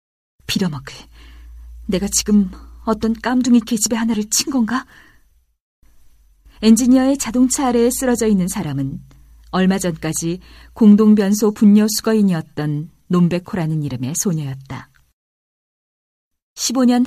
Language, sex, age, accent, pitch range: Korean, female, 40-59, native, 140-215 Hz